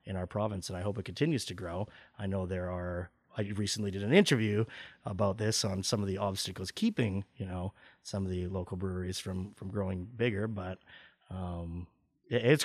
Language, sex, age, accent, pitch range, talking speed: English, male, 30-49, American, 95-125 Hz, 190 wpm